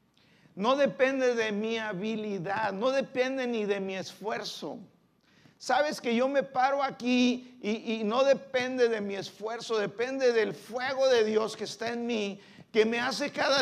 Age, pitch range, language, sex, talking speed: 50-69, 185-240 Hz, Spanish, male, 165 wpm